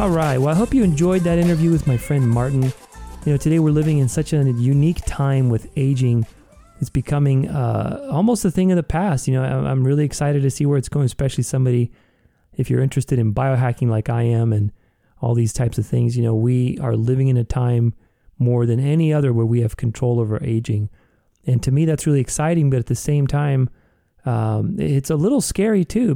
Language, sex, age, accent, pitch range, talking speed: English, male, 30-49, American, 115-145 Hz, 220 wpm